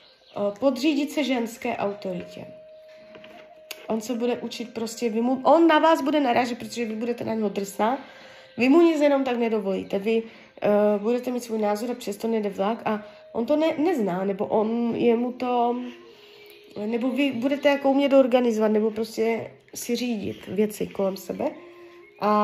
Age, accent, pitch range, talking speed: 30-49, native, 210-265 Hz, 160 wpm